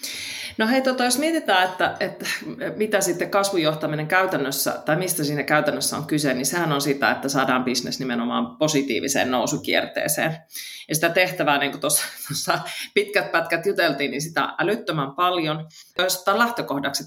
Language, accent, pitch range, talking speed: Finnish, native, 140-180 Hz, 150 wpm